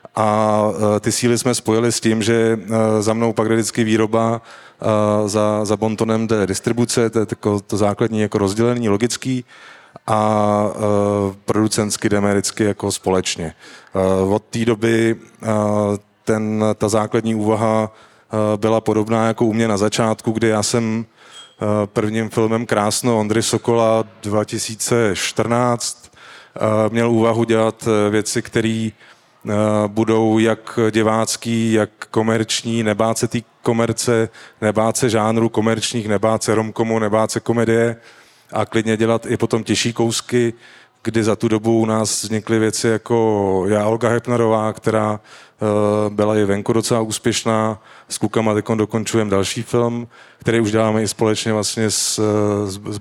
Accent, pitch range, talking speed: native, 105-115 Hz, 125 wpm